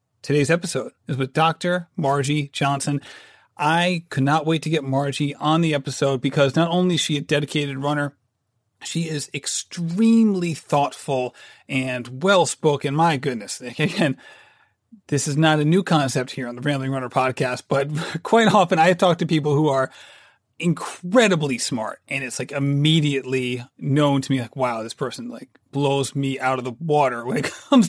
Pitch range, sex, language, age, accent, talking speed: 135-165 Hz, male, English, 30-49, American, 170 wpm